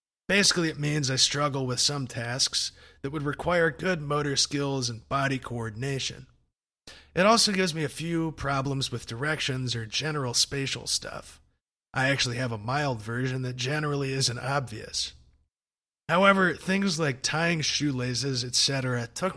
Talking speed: 145 wpm